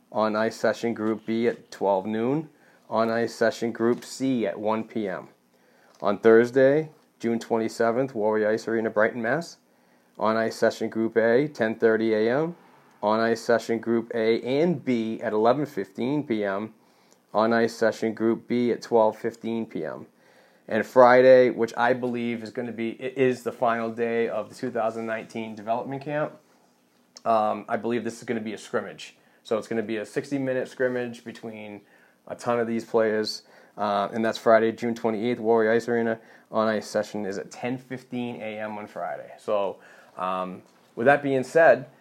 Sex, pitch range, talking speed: male, 110-125 Hz, 165 wpm